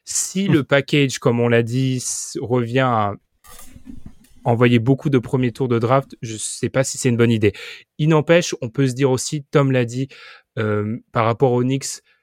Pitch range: 115-135 Hz